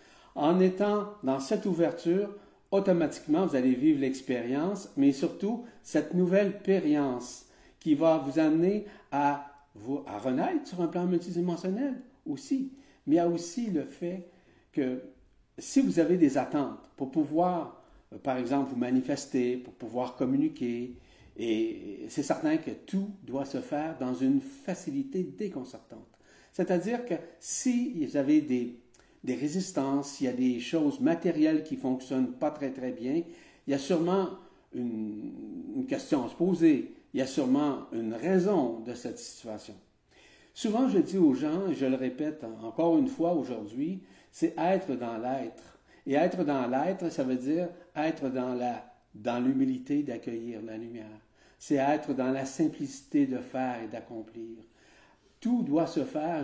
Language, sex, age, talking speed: French, male, 50-69, 155 wpm